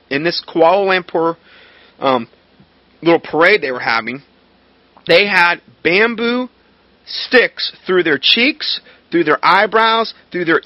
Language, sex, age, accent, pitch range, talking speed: English, male, 40-59, American, 160-225 Hz, 125 wpm